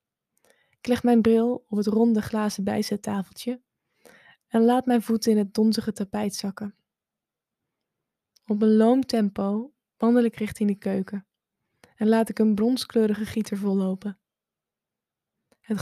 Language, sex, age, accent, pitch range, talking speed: Dutch, female, 10-29, Dutch, 205-235 Hz, 135 wpm